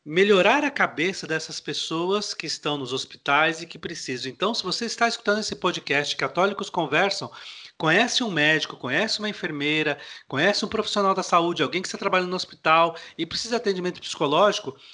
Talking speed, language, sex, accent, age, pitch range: 175 wpm, Portuguese, male, Brazilian, 40-59, 165-210 Hz